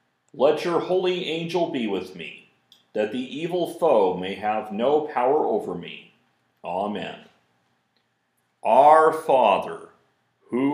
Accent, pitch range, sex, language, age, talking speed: American, 105-155 Hz, male, English, 50-69, 115 wpm